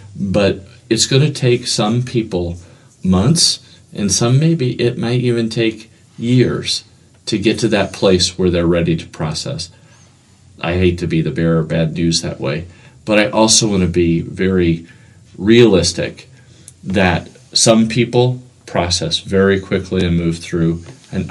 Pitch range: 85-120 Hz